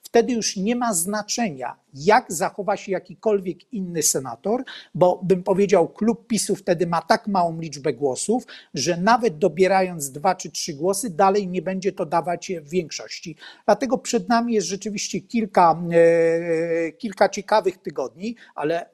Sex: male